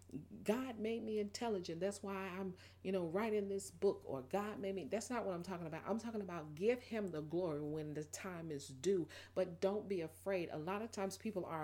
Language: English